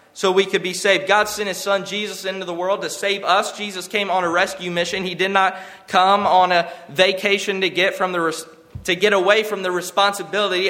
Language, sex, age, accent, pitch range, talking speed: English, male, 20-39, American, 180-205 Hz, 220 wpm